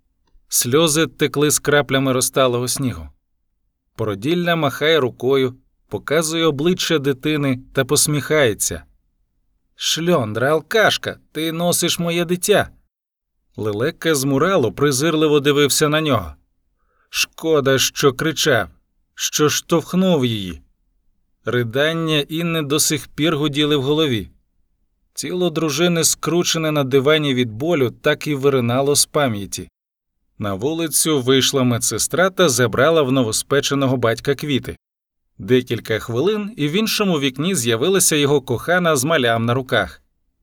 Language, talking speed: Ukrainian, 115 wpm